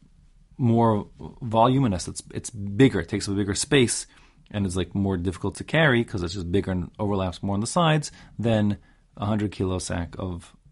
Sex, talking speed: male, 190 wpm